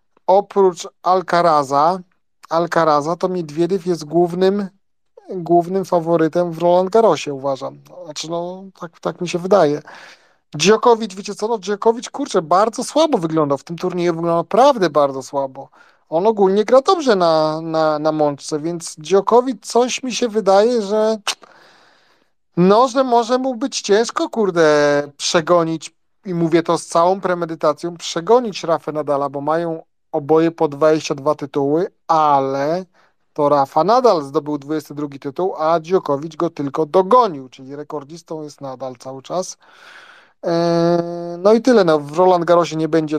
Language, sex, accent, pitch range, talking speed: Polish, male, native, 155-195 Hz, 140 wpm